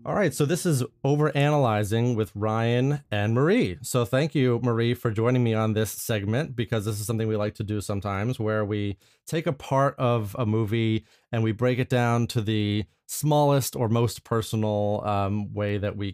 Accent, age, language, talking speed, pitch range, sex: American, 30-49, English, 195 wpm, 100-120 Hz, male